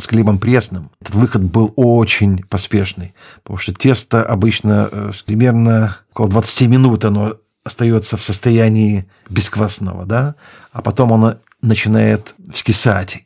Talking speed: 120 wpm